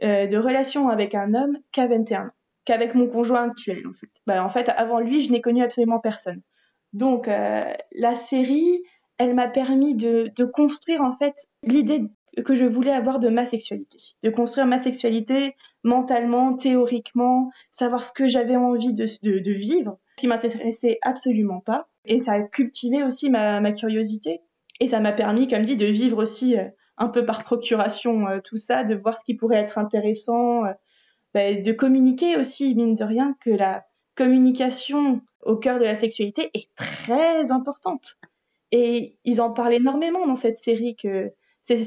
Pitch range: 225-265 Hz